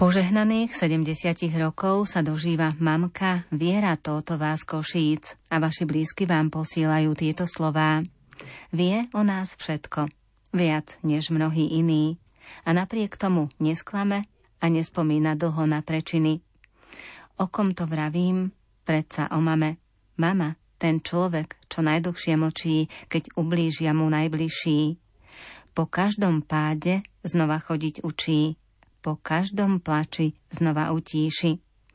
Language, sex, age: Slovak, female, 30-49